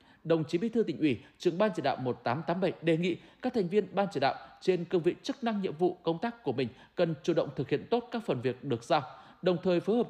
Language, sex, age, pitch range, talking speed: Vietnamese, male, 20-39, 150-210 Hz, 265 wpm